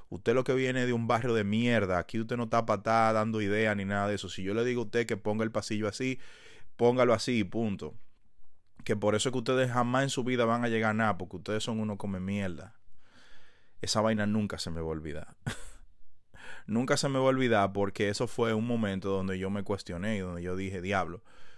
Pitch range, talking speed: 90-110 Hz, 235 wpm